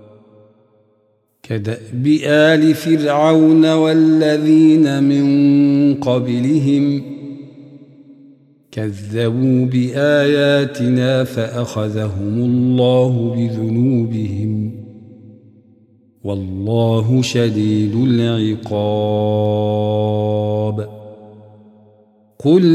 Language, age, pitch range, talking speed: Arabic, 50-69, 120-160 Hz, 40 wpm